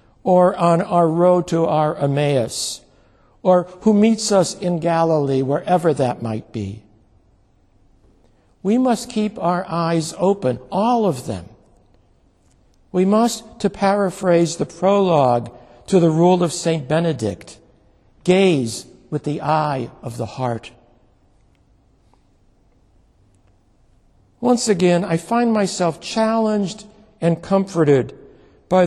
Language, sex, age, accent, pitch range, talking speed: English, male, 60-79, American, 125-180 Hz, 110 wpm